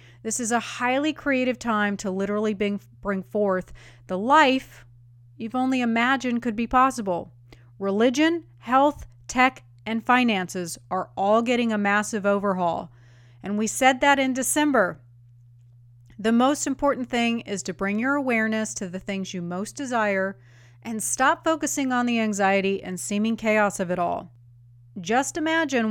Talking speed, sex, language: 150 wpm, female, English